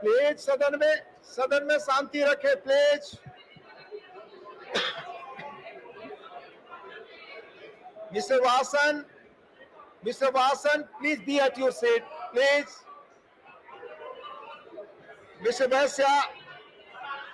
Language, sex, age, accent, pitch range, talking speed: Hindi, male, 50-69, native, 280-430 Hz, 60 wpm